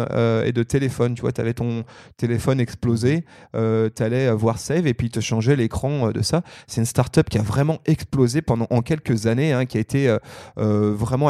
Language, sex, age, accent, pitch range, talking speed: French, male, 30-49, French, 115-145 Hz, 230 wpm